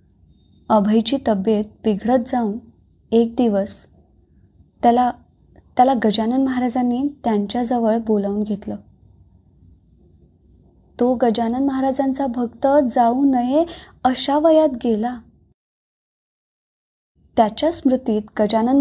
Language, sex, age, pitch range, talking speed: Marathi, female, 20-39, 210-275 Hz, 80 wpm